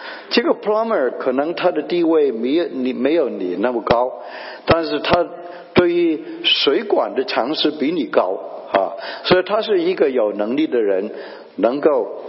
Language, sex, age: Chinese, male, 60-79